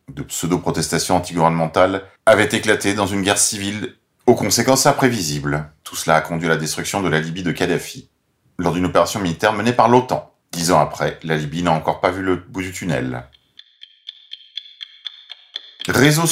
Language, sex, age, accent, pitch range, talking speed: French, male, 40-59, French, 90-130 Hz, 165 wpm